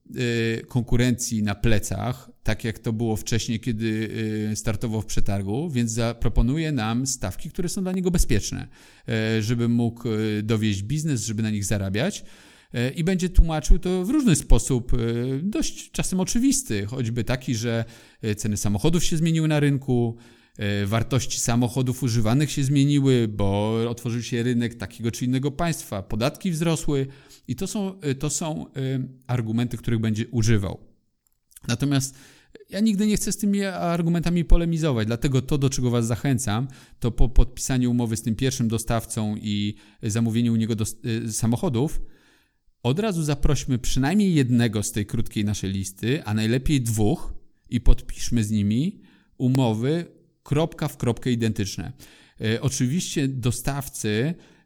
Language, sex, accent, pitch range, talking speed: Polish, male, native, 115-145 Hz, 135 wpm